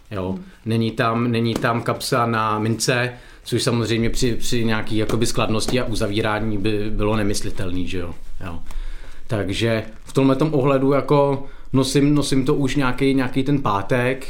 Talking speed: 140 wpm